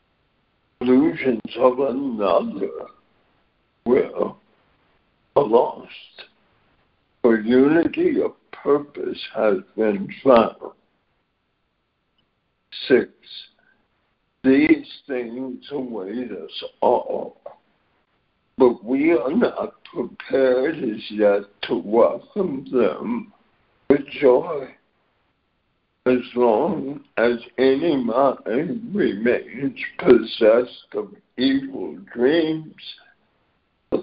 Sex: male